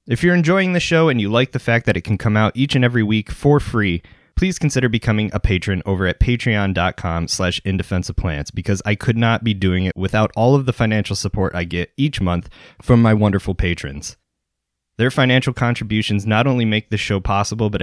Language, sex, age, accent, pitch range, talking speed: English, male, 20-39, American, 95-120 Hz, 210 wpm